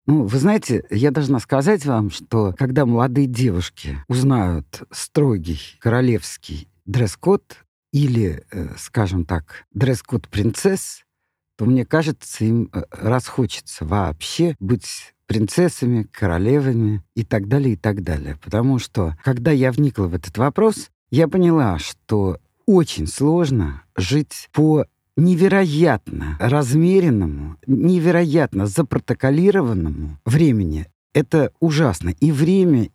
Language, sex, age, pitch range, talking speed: Russian, male, 50-69, 95-150 Hz, 105 wpm